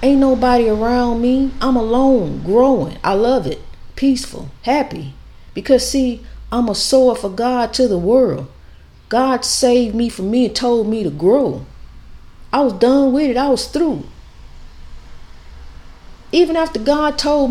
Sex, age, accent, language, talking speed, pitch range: female, 50-69, American, English, 150 wpm, 175-270 Hz